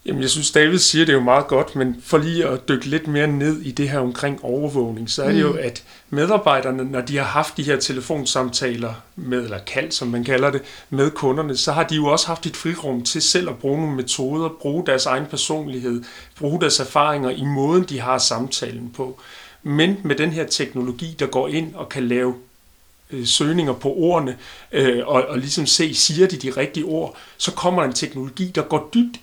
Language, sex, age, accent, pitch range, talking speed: Danish, male, 40-59, native, 130-160 Hz, 210 wpm